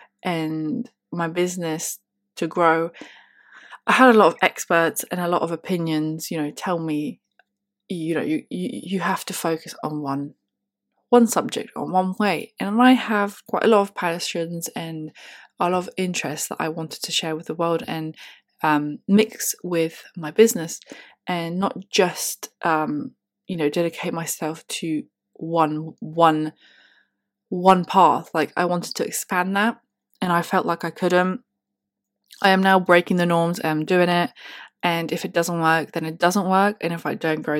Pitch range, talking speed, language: 160-190 Hz, 175 wpm, English